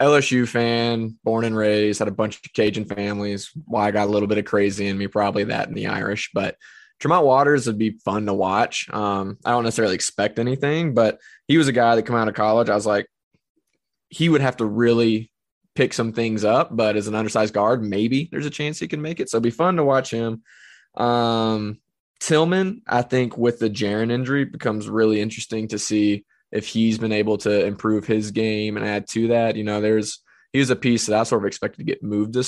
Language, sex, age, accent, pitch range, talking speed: English, male, 20-39, American, 105-120 Hz, 230 wpm